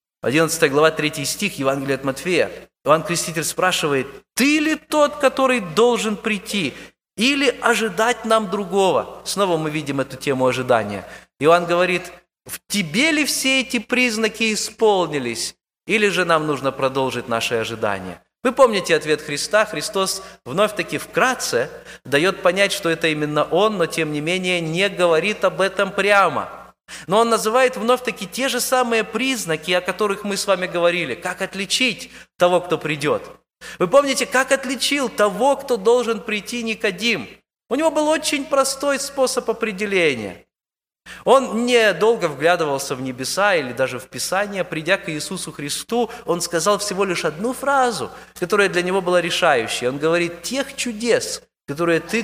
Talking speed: 150 wpm